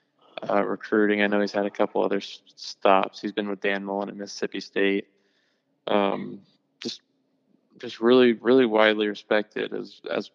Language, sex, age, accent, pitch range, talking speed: English, male, 20-39, American, 100-110 Hz, 160 wpm